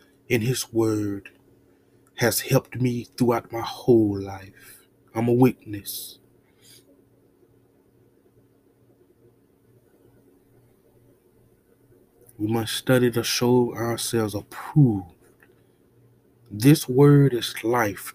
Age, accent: 30-49, American